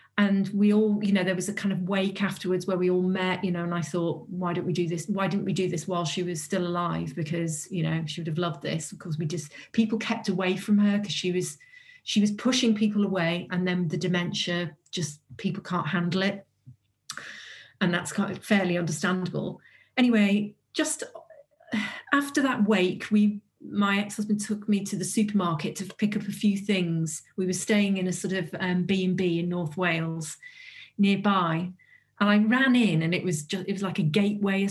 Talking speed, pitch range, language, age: 210 wpm, 175-205 Hz, English, 40-59